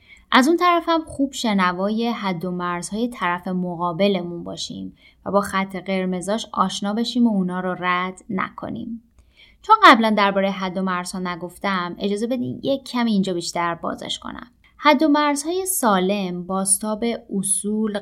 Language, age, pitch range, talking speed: Persian, 20-39, 185-240 Hz, 155 wpm